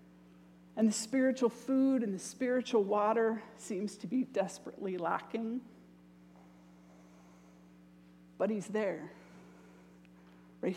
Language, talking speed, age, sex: English, 95 wpm, 50-69, female